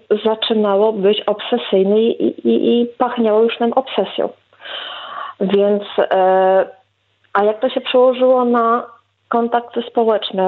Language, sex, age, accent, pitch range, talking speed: Polish, female, 40-59, native, 195-240 Hz, 115 wpm